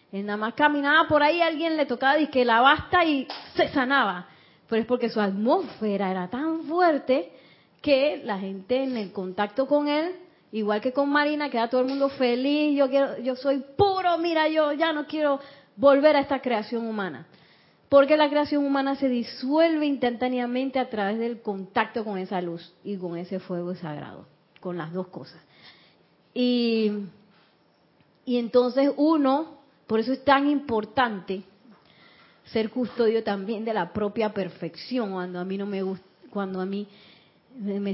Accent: American